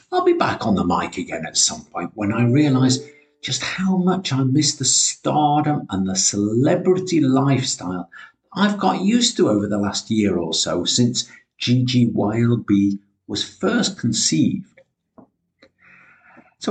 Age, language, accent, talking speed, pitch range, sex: 50-69, English, British, 145 wpm, 105-180 Hz, male